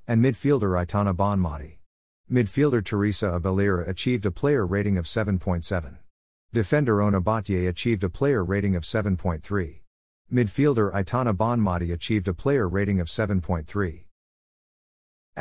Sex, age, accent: male, 50-69, American